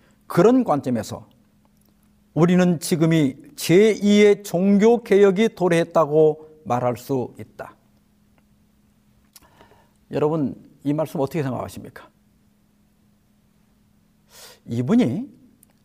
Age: 50-69